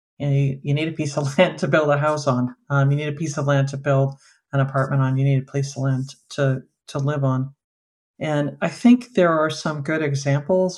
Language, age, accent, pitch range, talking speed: English, 50-69, American, 140-155 Hz, 230 wpm